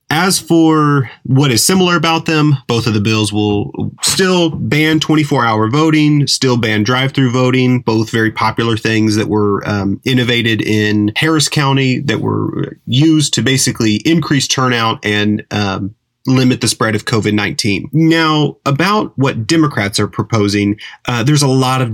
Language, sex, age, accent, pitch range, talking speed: English, male, 30-49, American, 105-140 Hz, 155 wpm